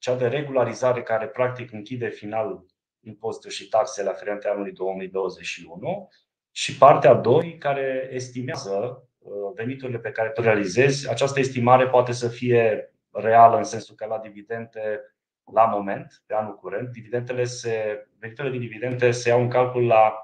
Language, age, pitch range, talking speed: Romanian, 30-49, 105-130 Hz, 145 wpm